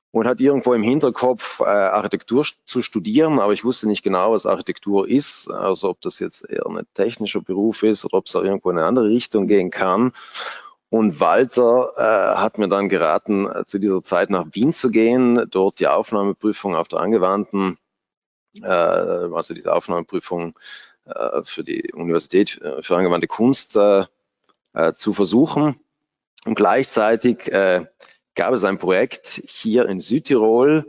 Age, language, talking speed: 30-49, German, 160 wpm